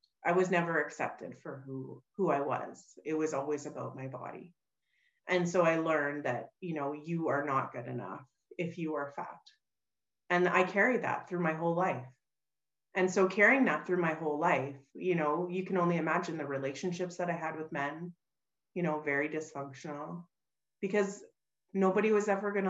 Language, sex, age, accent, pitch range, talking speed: English, female, 30-49, American, 150-185 Hz, 180 wpm